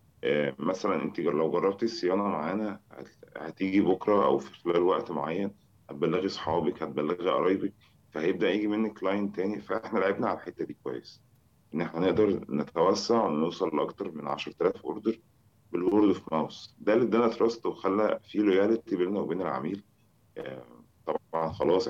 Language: Arabic